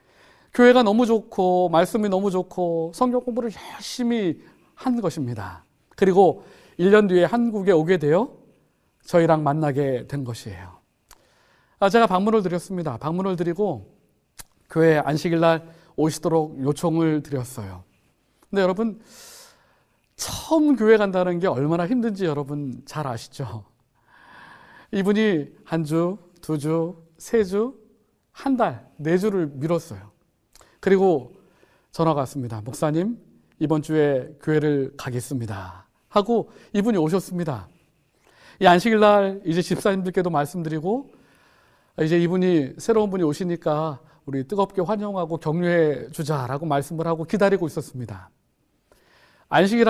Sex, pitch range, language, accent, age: male, 150-200 Hz, Korean, native, 40-59